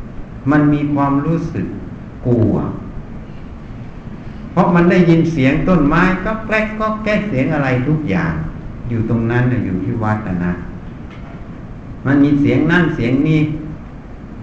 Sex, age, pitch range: male, 60-79, 120-150 Hz